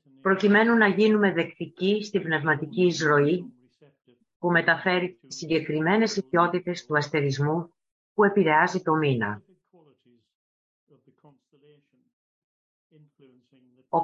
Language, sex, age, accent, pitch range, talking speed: Greek, female, 30-49, native, 140-190 Hz, 80 wpm